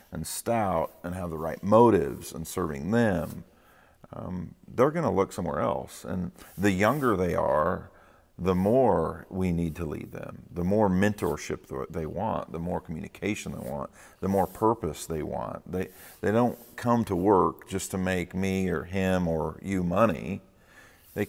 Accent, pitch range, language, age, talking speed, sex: American, 85-105 Hz, English, 50-69, 170 wpm, male